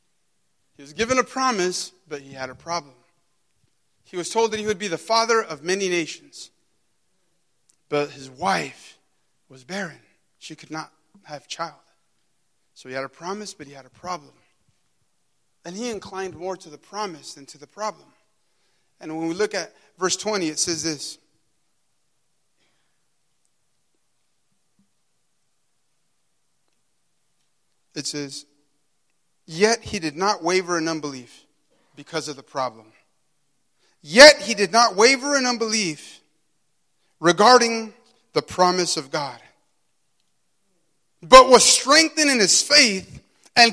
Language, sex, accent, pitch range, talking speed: English, male, American, 155-220 Hz, 130 wpm